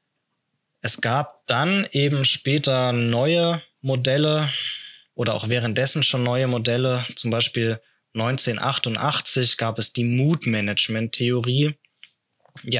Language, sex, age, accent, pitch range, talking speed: German, male, 20-39, German, 115-135 Hz, 100 wpm